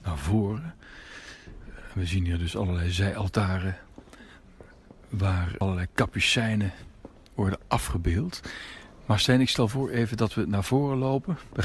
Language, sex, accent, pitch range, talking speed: Dutch, male, Dutch, 95-115 Hz, 130 wpm